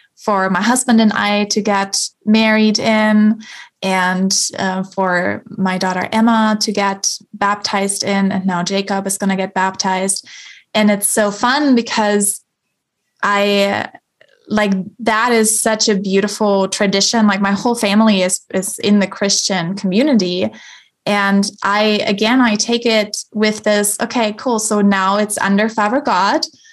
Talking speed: 150 wpm